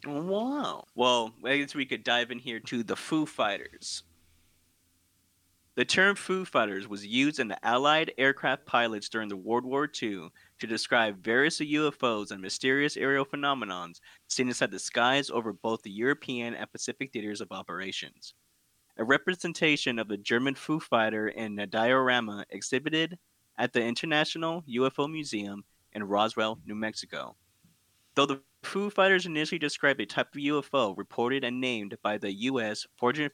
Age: 20-39